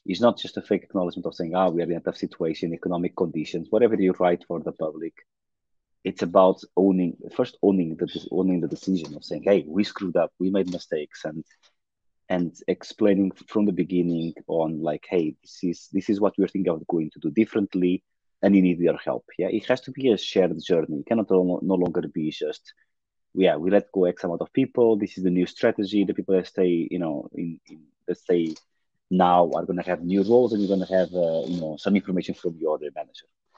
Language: English